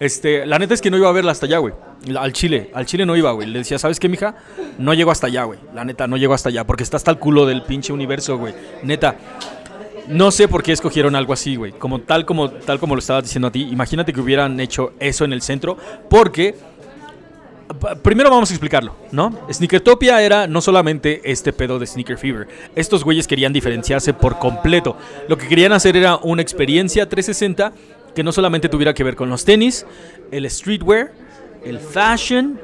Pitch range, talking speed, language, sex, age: 135-180 Hz, 210 wpm, Spanish, male, 30-49